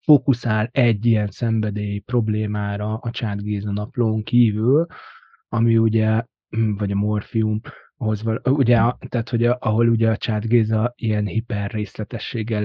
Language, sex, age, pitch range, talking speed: Hungarian, male, 20-39, 110-125 Hz, 110 wpm